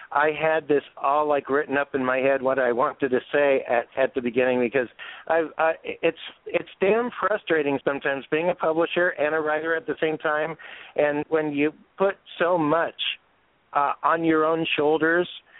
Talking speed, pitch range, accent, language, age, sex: 185 wpm, 140-160 Hz, American, English, 50-69, male